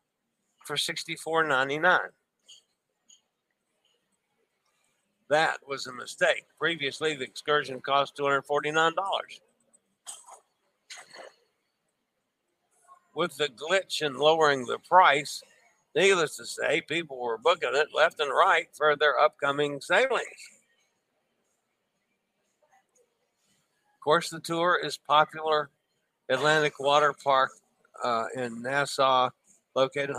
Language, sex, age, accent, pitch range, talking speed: English, male, 60-79, American, 135-165 Hz, 90 wpm